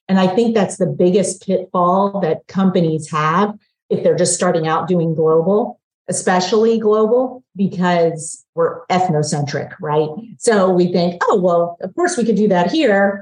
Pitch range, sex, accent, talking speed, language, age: 160-200 Hz, female, American, 160 wpm, English, 40-59